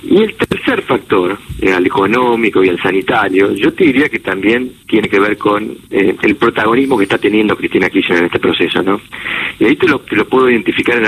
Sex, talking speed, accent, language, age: male, 210 wpm, Argentinian, Spanish, 40-59